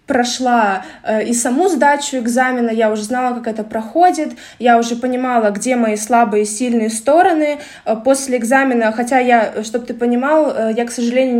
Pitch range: 230-270 Hz